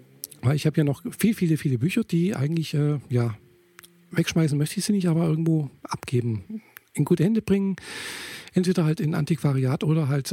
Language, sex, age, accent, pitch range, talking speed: German, male, 50-69, German, 140-175 Hz, 180 wpm